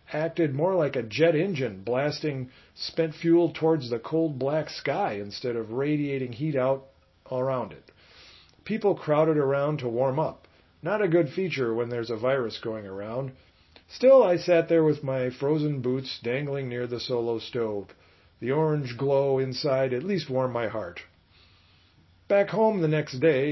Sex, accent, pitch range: male, American, 120-160 Hz